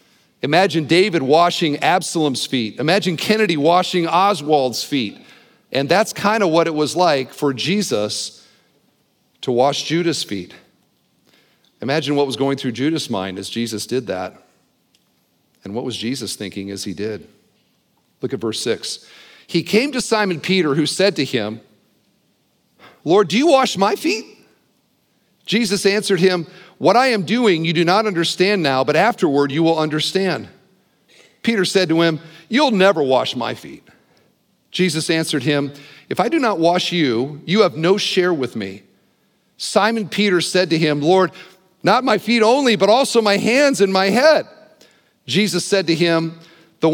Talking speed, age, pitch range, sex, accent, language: 160 wpm, 50-69, 150-200 Hz, male, American, English